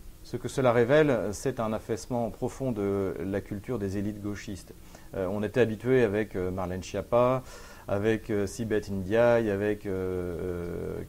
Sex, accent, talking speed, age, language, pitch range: male, French, 150 wpm, 40-59, French, 100-120 Hz